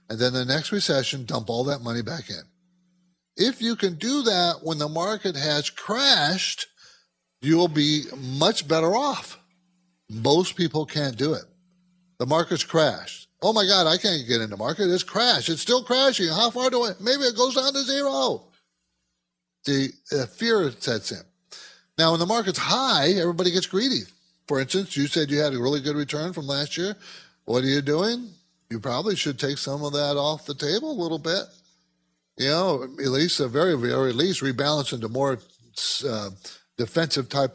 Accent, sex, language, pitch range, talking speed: American, male, English, 130-180 Hz, 180 wpm